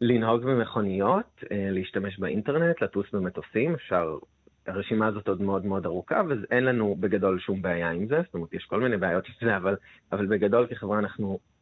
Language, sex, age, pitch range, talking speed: Hebrew, male, 30-49, 95-115 Hz, 170 wpm